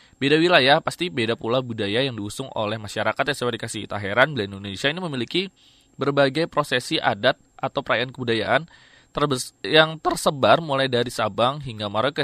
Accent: native